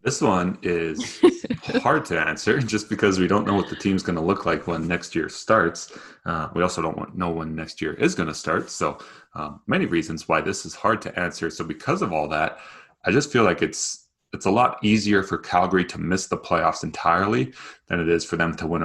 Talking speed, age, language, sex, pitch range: 230 wpm, 30-49, English, male, 80-95 Hz